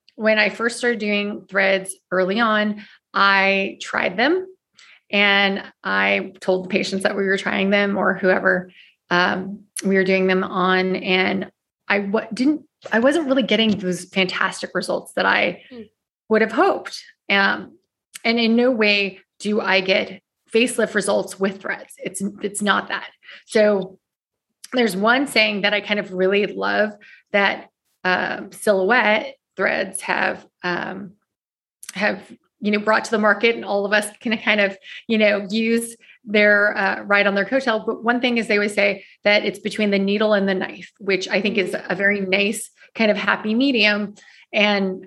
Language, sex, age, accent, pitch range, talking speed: English, female, 20-39, American, 190-215 Hz, 170 wpm